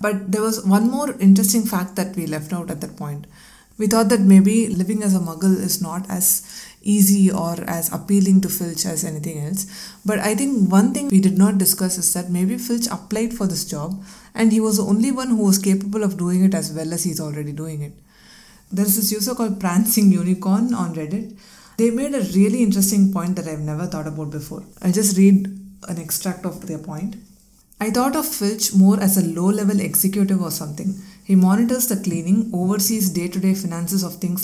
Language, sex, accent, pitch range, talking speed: English, female, Indian, 180-205 Hz, 205 wpm